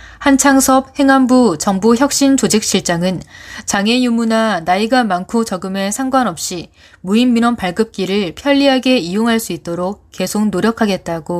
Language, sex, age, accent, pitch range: Korean, female, 20-39, native, 170-245 Hz